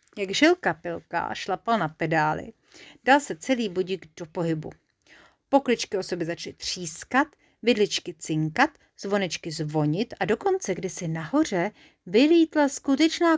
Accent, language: native, Czech